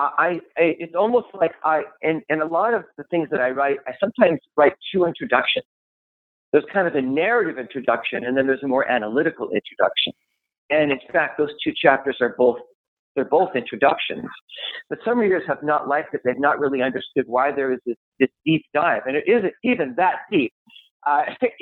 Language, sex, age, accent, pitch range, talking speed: English, male, 50-69, American, 135-190 Hz, 195 wpm